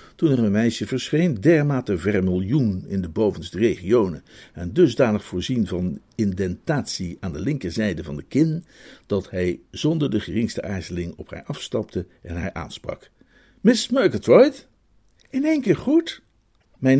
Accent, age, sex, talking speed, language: Dutch, 50-69, male, 145 wpm, Dutch